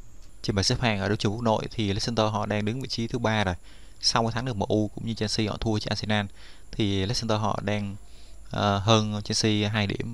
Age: 20-39